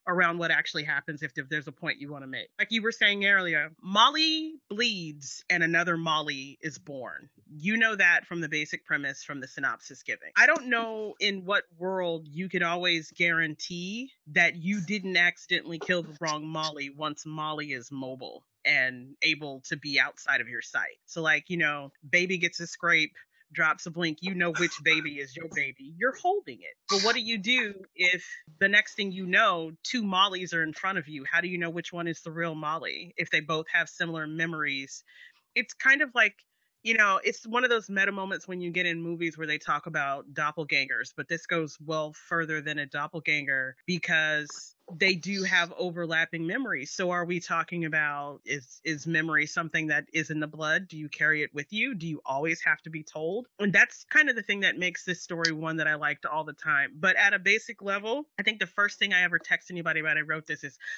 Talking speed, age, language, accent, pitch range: 215 wpm, 30-49, English, American, 155-195 Hz